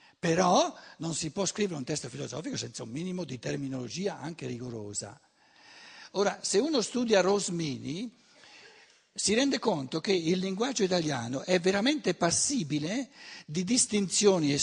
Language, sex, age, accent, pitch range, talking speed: Italian, male, 60-79, native, 150-200 Hz, 135 wpm